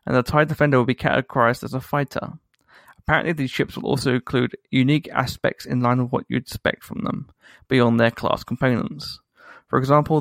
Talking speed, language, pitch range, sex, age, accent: 190 wpm, English, 125-150 Hz, male, 30-49, British